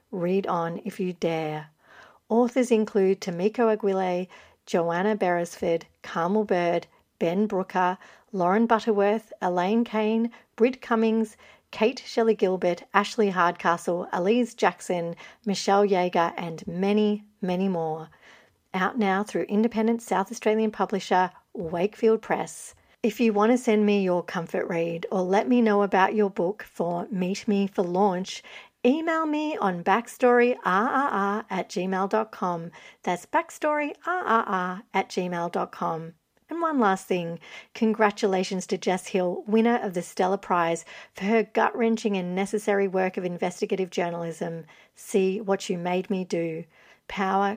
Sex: female